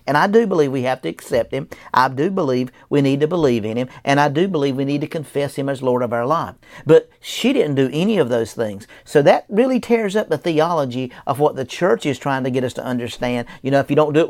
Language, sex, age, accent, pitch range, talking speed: English, male, 50-69, American, 125-155 Hz, 275 wpm